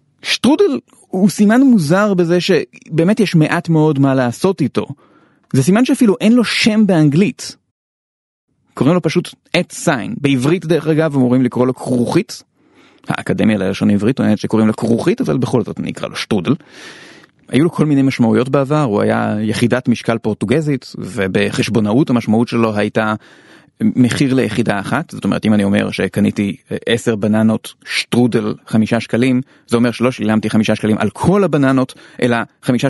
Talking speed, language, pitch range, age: 155 wpm, Hebrew, 115-160 Hz, 30-49